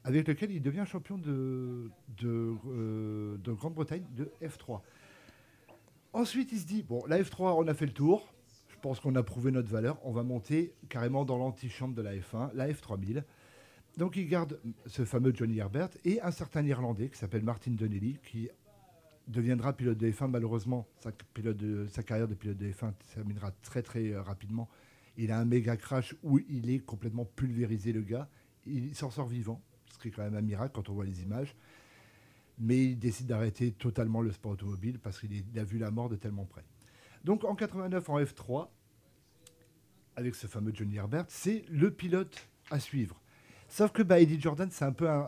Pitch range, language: 110-145 Hz, French